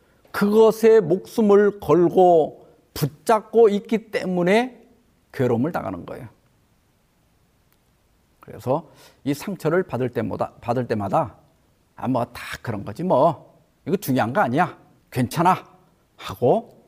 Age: 50-69